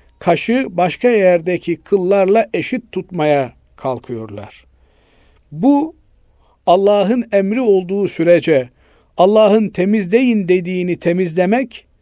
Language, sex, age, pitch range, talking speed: Turkish, male, 50-69, 150-200 Hz, 80 wpm